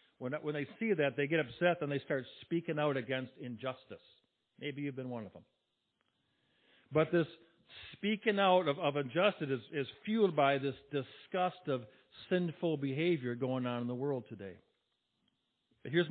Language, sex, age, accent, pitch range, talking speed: English, male, 60-79, American, 135-175 Hz, 155 wpm